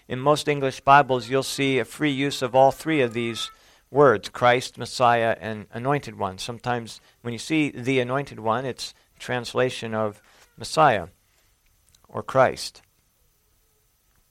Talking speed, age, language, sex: 140 wpm, 50-69, English, male